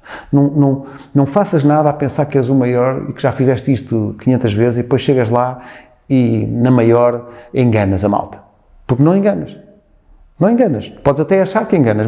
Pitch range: 110-145 Hz